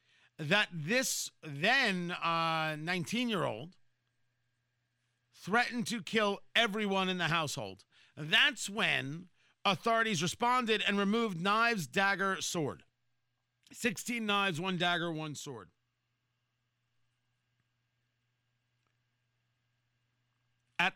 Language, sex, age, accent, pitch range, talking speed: English, male, 40-59, American, 125-200 Hz, 80 wpm